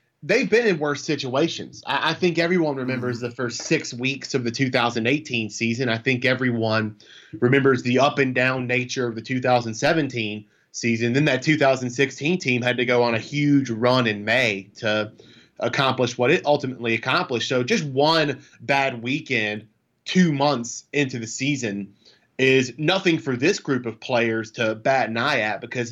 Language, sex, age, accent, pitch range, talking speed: English, male, 20-39, American, 120-150 Hz, 160 wpm